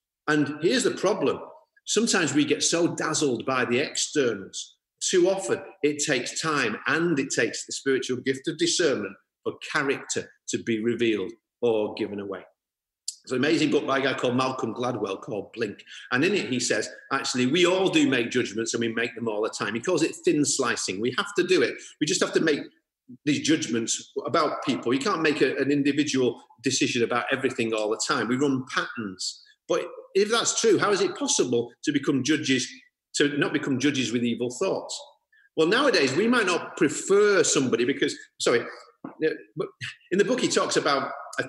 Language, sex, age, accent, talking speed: English, male, 40-59, British, 190 wpm